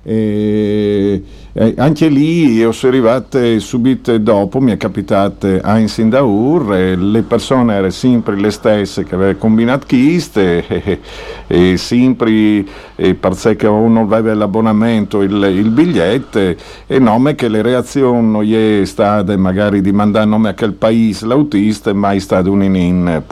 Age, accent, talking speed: 50-69, native, 165 wpm